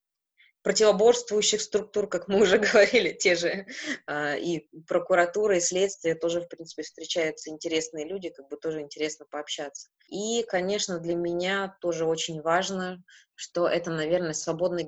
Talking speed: 135 wpm